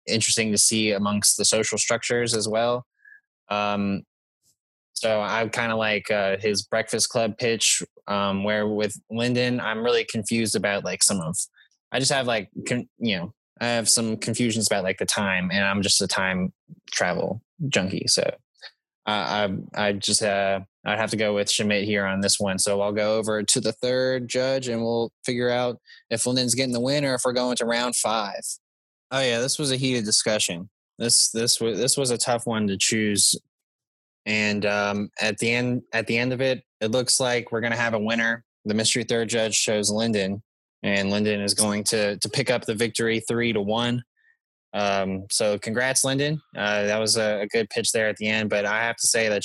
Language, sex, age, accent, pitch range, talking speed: English, male, 20-39, American, 105-120 Hz, 205 wpm